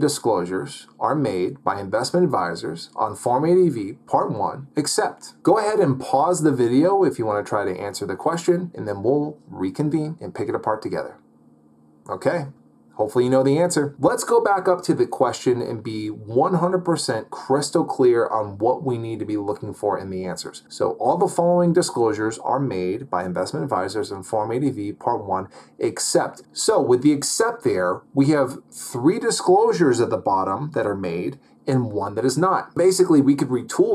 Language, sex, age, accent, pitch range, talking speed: English, male, 30-49, American, 105-155 Hz, 185 wpm